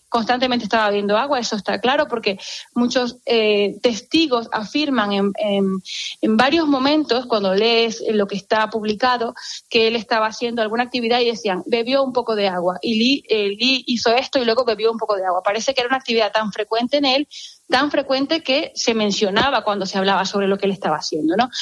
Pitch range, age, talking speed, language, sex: 200-250 Hz, 20-39, 200 wpm, Spanish, female